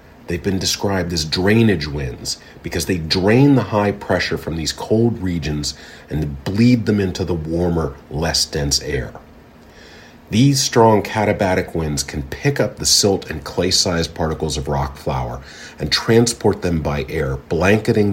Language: English